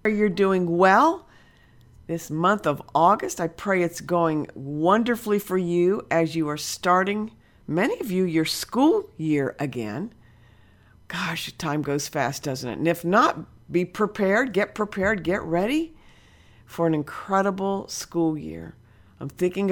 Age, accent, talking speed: 50-69, American, 145 wpm